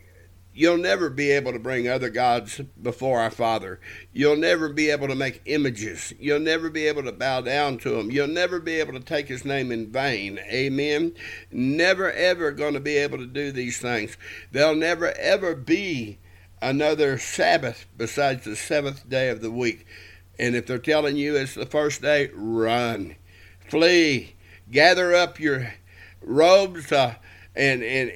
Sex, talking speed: male, 170 wpm